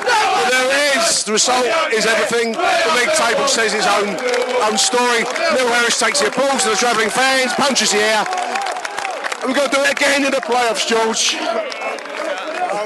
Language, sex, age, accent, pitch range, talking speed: English, male, 40-59, British, 125-200 Hz, 180 wpm